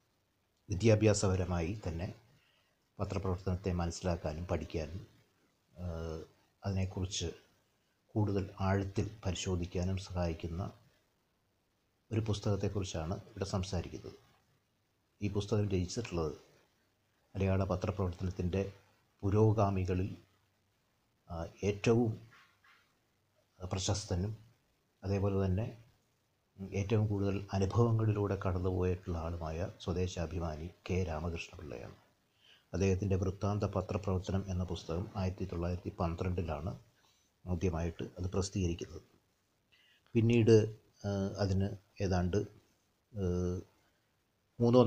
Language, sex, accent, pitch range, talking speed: Malayalam, male, native, 90-105 Hz, 60 wpm